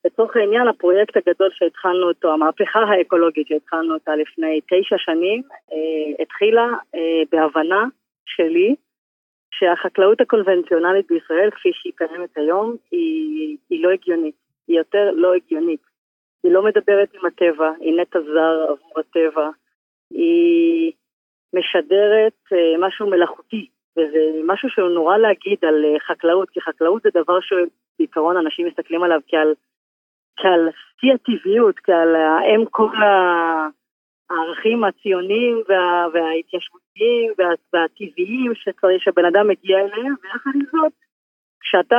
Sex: female